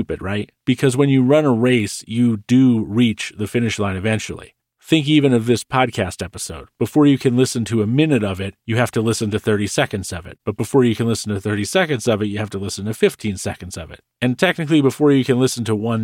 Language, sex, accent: English, male, American